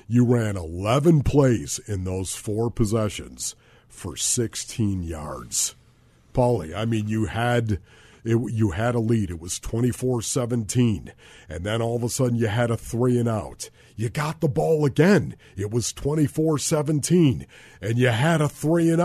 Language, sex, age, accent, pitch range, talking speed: English, male, 50-69, American, 110-150 Hz, 160 wpm